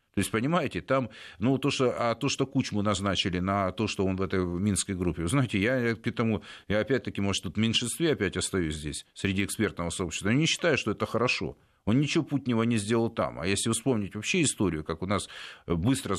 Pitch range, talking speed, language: 95-130 Hz, 215 wpm, Russian